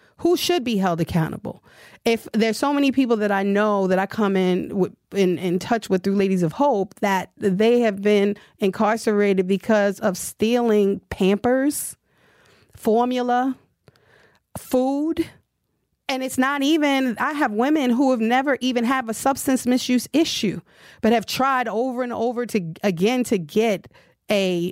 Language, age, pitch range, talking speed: English, 30-49, 185-245 Hz, 155 wpm